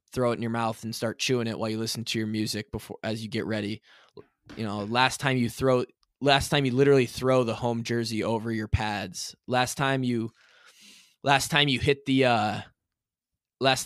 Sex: male